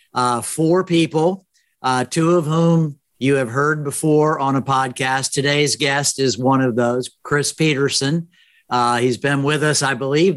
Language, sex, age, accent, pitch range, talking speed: English, male, 50-69, American, 125-150 Hz, 170 wpm